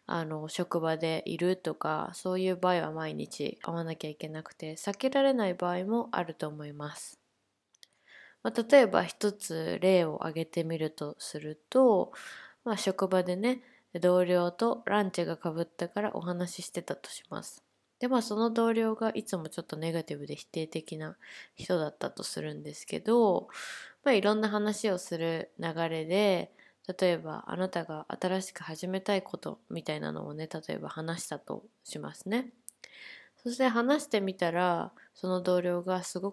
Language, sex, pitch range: Japanese, female, 160-210 Hz